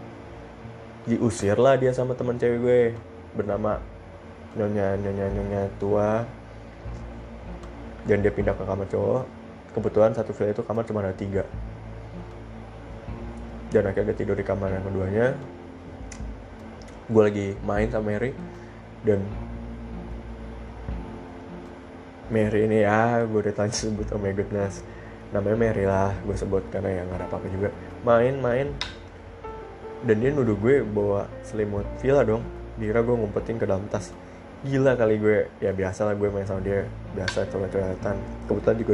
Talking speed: 140 wpm